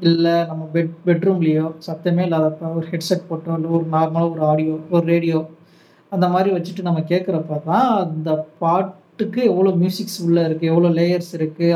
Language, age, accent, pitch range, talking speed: Tamil, 20-39, native, 165-190 Hz, 165 wpm